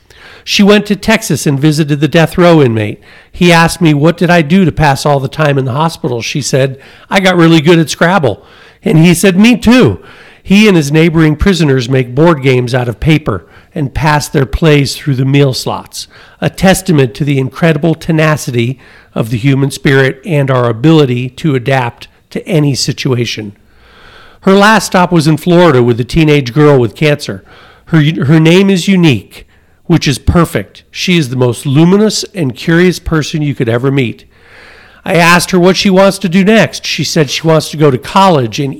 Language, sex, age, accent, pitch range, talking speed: English, male, 50-69, American, 130-170 Hz, 195 wpm